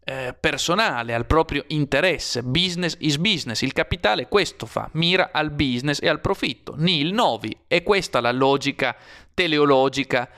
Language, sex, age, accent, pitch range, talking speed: Italian, male, 30-49, native, 130-160 Hz, 140 wpm